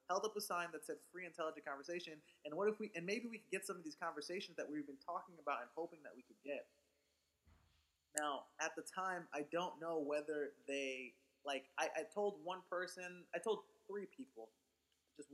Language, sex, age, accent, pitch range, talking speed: English, male, 20-39, American, 135-175 Hz, 205 wpm